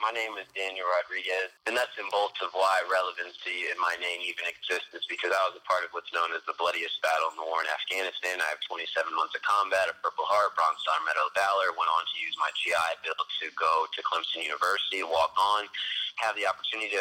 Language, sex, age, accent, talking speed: English, male, 30-49, American, 235 wpm